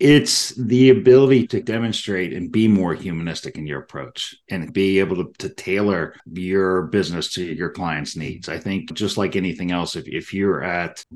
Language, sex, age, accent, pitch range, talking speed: English, male, 40-59, American, 80-100 Hz, 185 wpm